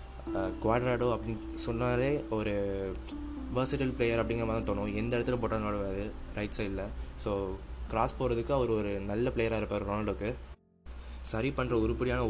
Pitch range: 100-120 Hz